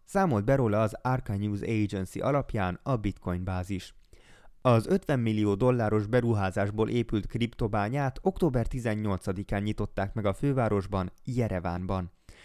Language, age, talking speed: Hungarian, 20-39, 120 wpm